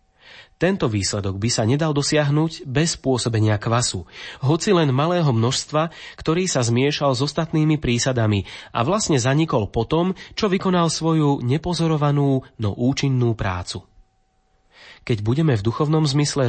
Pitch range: 110-150 Hz